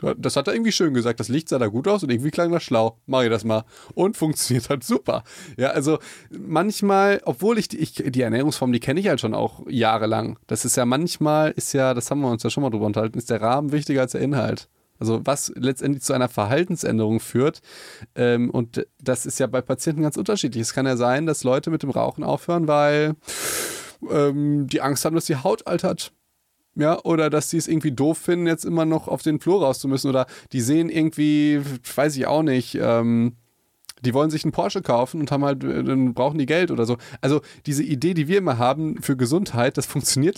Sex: male